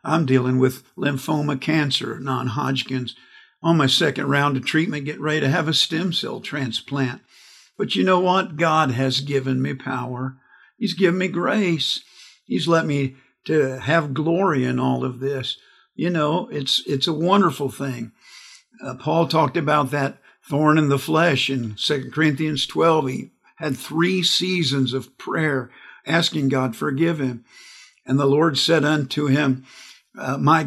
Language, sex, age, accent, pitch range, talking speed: English, male, 50-69, American, 130-160 Hz, 160 wpm